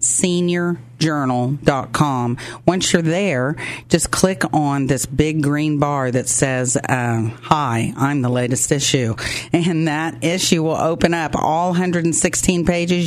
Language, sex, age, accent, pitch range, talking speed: English, female, 40-59, American, 130-165 Hz, 130 wpm